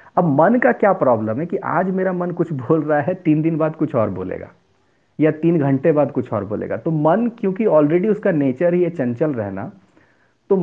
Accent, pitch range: native, 130-190 Hz